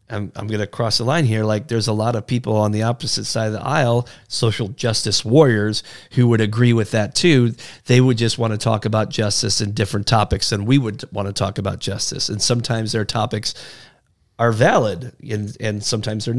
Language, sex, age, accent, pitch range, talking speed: English, male, 30-49, American, 110-130 Hz, 215 wpm